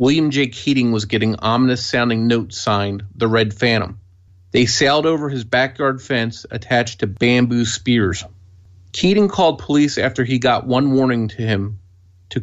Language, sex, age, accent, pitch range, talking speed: English, male, 40-59, American, 105-130 Hz, 160 wpm